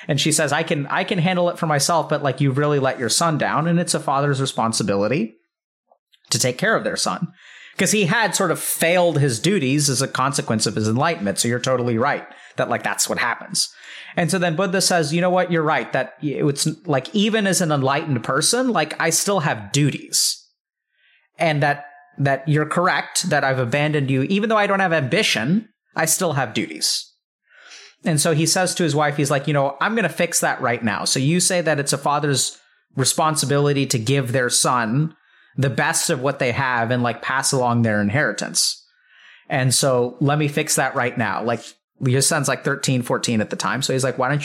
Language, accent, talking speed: English, American, 215 wpm